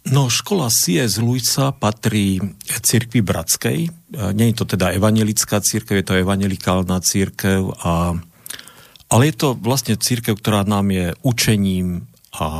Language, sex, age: Slovak, male, 50-69